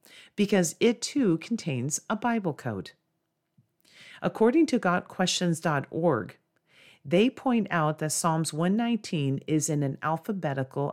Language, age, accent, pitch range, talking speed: English, 40-59, American, 150-195 Hz, 110 wpm